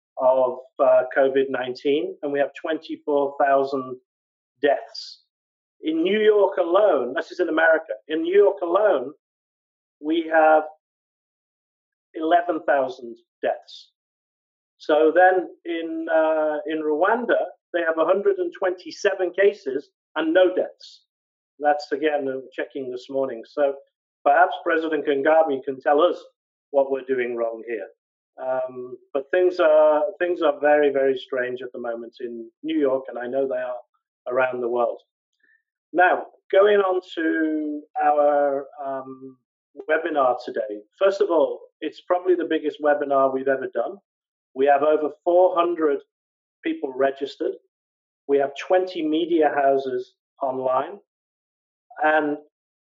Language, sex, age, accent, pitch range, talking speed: English, male, 50-69, British, 135-185 Hz, 125 wpm